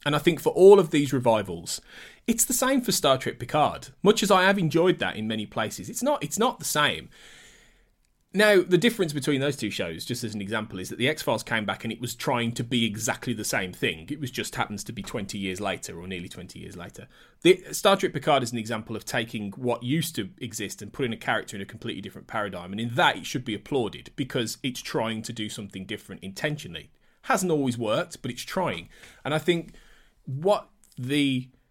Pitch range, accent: 110-155 Hz, British